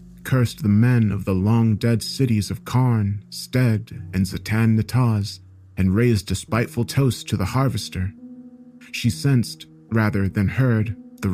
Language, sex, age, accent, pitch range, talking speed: English, male, 30-49, American, 95-120 Hz, 145 wpm